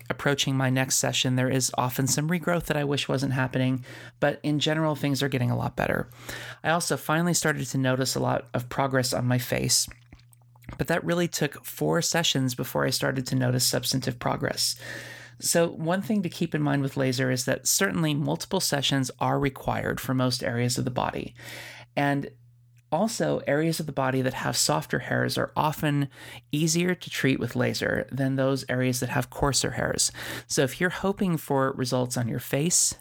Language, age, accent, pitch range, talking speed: English, 30-49, American, 125-150 Hz, 190 wpm